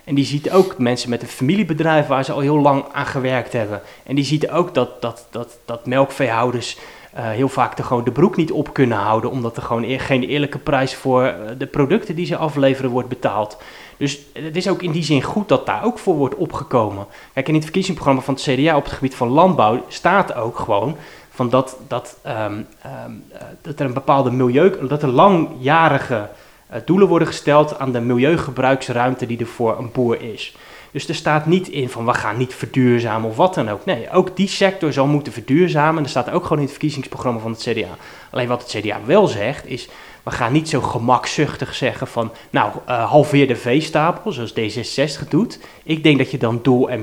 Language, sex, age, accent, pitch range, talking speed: Dutch, male, 30-49, Dutch, 120-150 Hz, 210 wpm